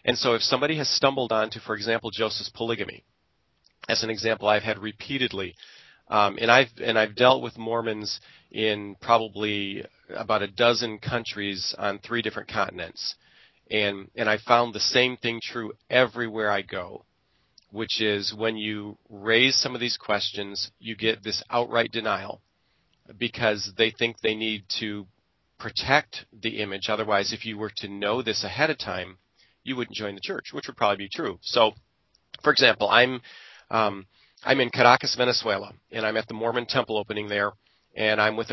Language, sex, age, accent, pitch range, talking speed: English, male, 40-59, American, 105-120 Hz, 170 wpm